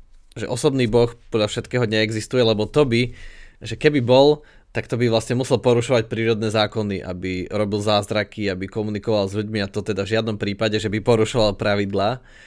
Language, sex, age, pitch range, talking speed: Slovak, male, 20-39, 105-125 Hz, 180 wpm